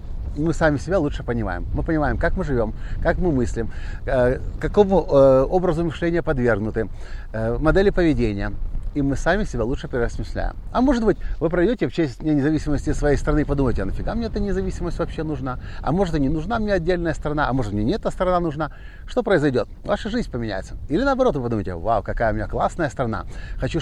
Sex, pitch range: male, 105-155 Hz